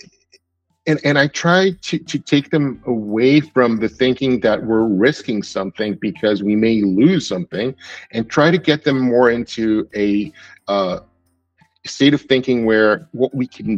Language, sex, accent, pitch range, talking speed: English, male, American, 105-135 Hz, 160 wpm